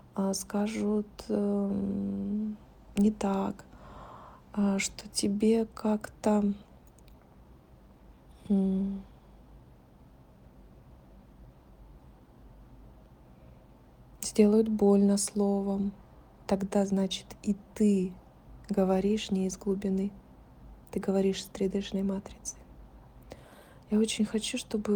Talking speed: 70 wpm